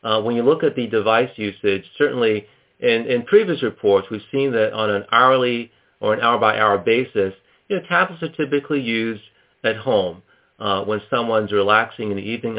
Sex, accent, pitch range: male, American, 105-140 Hz